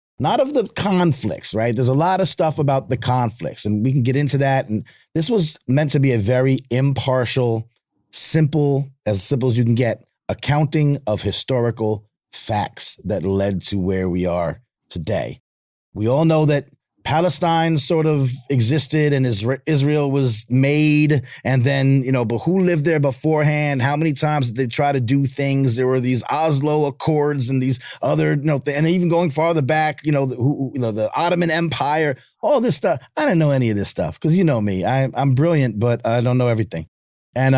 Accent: American